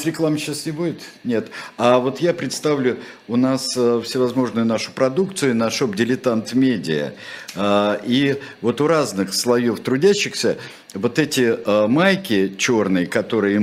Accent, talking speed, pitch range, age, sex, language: native, 125 wpm, 100-135 Hz, 50-69, male, Russian